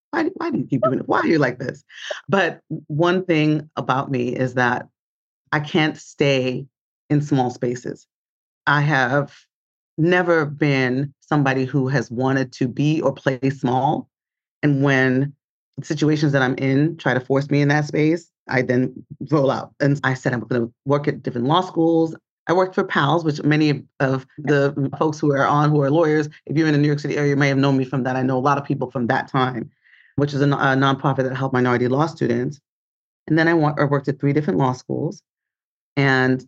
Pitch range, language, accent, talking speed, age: 130-150 Hz, English, American, 205 wpm, 30-49